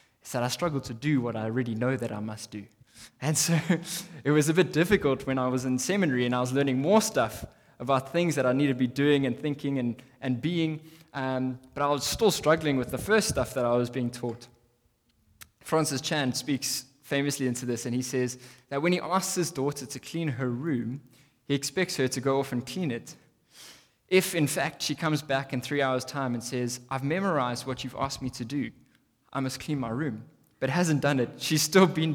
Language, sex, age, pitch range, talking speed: English, male, 20-39, 125-150 Hz, 225 wpm